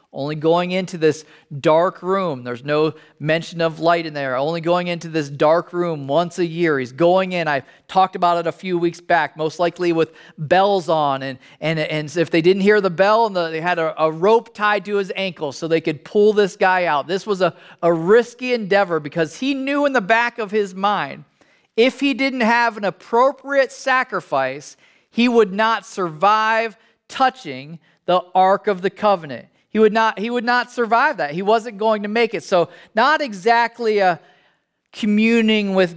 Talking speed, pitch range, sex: 190 wpm, 170-220 Hz, male